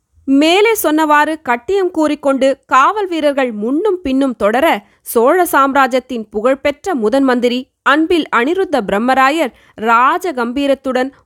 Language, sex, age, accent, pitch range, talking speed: Tamil, female, 20-39, native, 215-285 Hz, 95 wpm